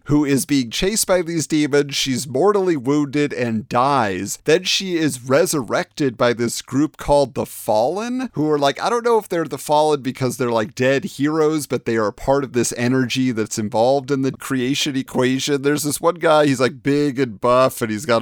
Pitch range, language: 125-155 Hz, English